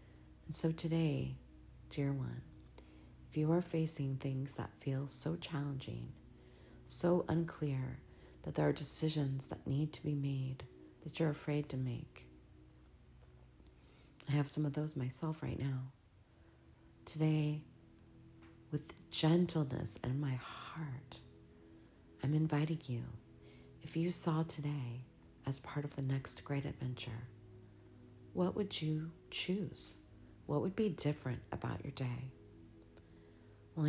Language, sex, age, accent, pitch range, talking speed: English, female, 40-59, American, 110-150 Hz, 125 wpm